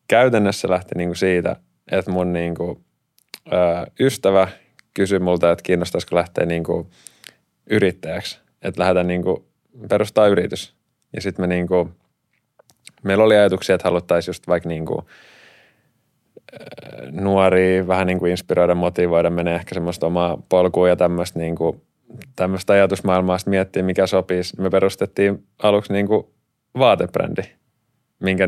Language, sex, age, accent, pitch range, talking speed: Finnish, male, 20-39, native, 85-95 Hz, 120 wpm